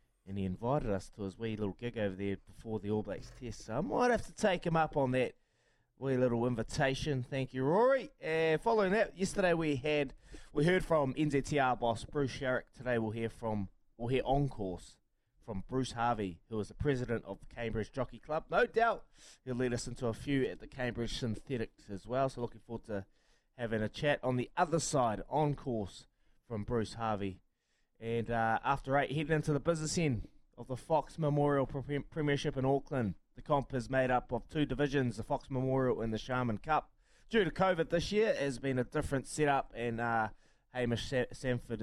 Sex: male